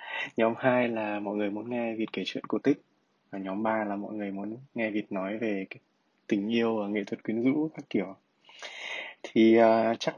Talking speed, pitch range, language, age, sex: 205 wpm, 100-120 Hz, Vietnamese, 20-39, male